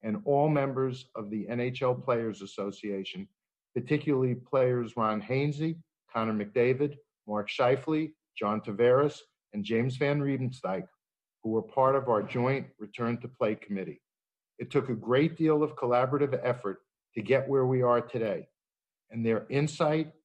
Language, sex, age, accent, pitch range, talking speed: English, male, 50-69, American, 115-140 Hz, 145 wpm